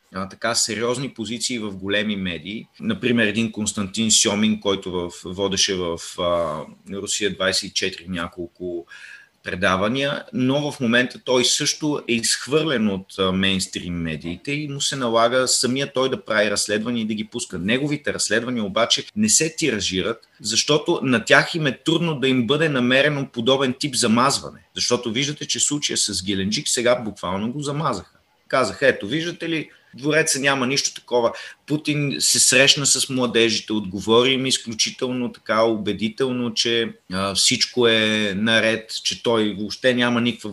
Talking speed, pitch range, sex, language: 145 wpm, 100-130 Hz, male, Bulgarian